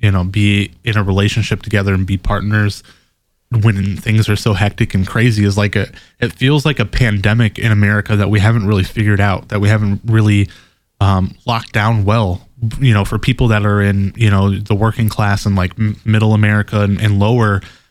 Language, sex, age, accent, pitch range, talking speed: English, male, 20-39, American, 105-115 Hz, 200 wpm